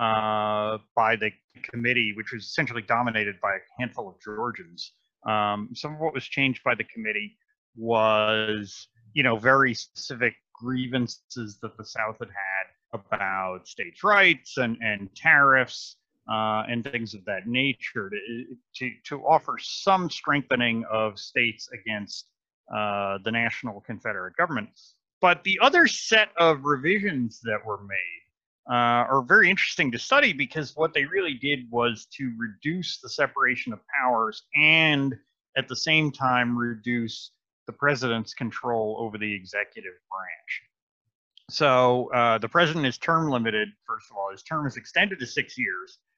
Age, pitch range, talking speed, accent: 30-49, 110-145 Hz, 150 wpm, American